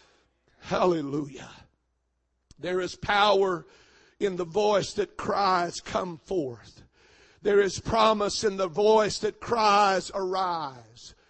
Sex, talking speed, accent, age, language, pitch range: male, 105 wpm, American, 60-79, English, 210-310 Hz